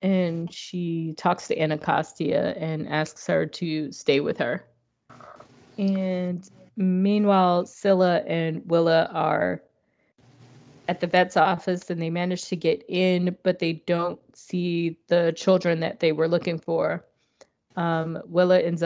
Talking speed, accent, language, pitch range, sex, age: 135 wpm, American, English, 155-175 Hz, female, 20-39